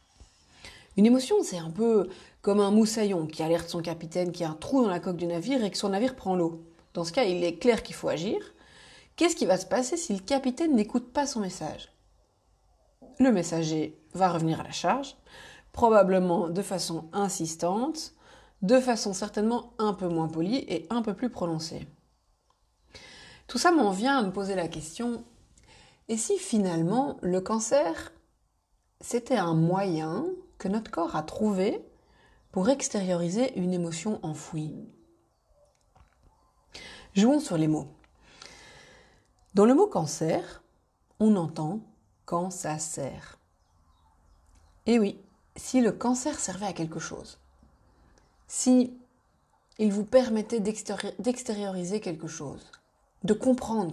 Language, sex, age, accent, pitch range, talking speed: French, female, 30-49, French, 165-240 Hz, 145 wpm